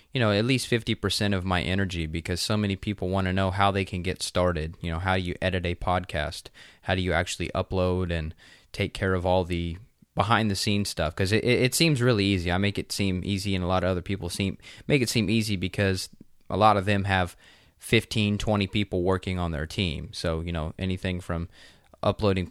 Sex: male